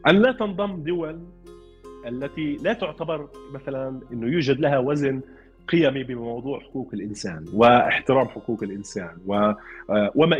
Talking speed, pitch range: 115 wpm, 120-160 Hz